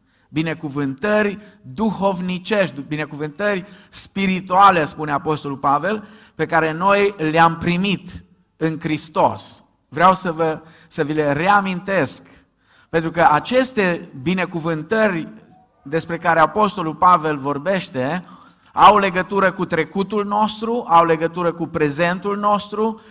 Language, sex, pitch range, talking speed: Romanian, male, 160-195 Hz, 100 wpm